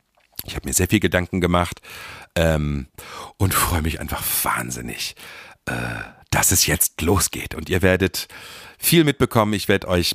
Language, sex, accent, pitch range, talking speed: German, male, German, 80-105 Hz, 155 wpm